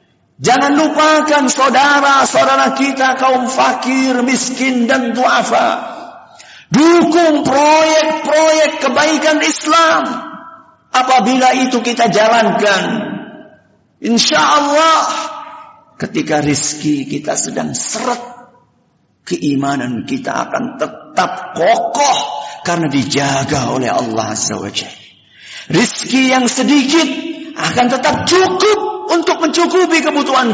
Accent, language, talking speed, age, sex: native, Indonesian, 85 wpm, 50-69, male